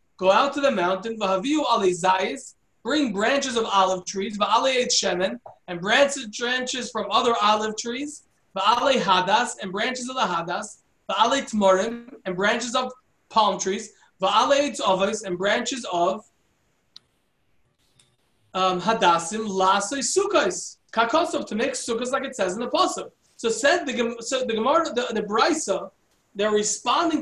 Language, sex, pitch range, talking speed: English, male, 210-275 Hz, 145 wpm